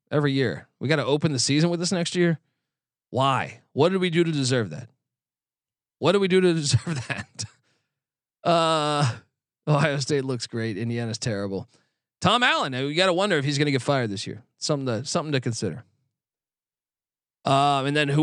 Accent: American